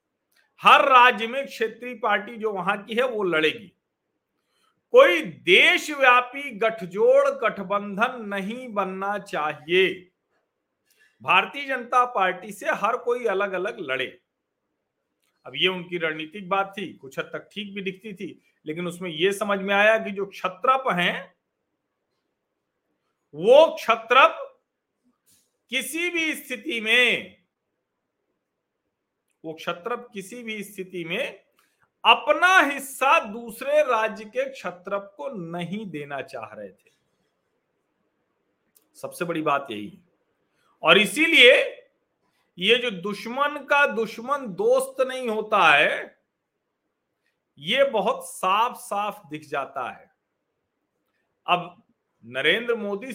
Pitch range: 185-260 Hz